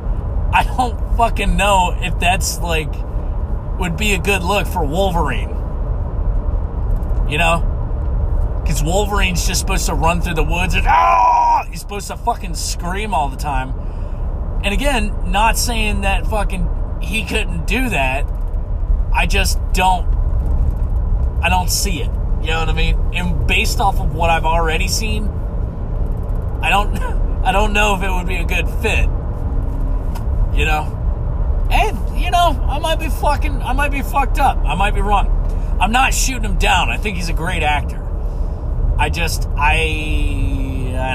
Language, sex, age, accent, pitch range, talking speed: English, male, 30-49, American, 75-95 Hz, 160 wpm